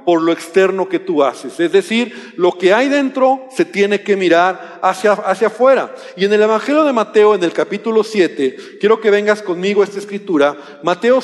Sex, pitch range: male, 190-255 Hz